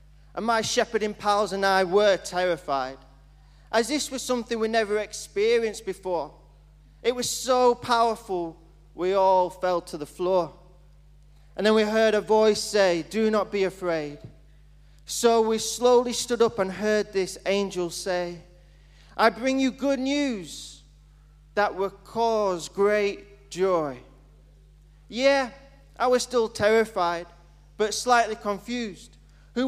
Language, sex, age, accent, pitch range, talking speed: English, male, 20-39, British, 160-225 Hz, 135 wpm